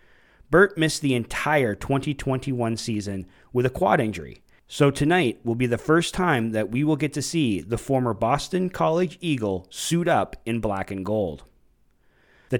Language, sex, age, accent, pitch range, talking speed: English, male, 30-49, American, 110-150 Hz, 165 wpm